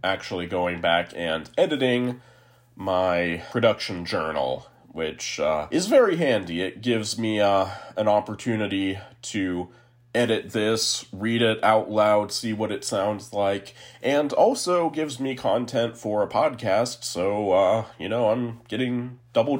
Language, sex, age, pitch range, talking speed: English, male, 30-49, 95-125 Hz, 140 wpm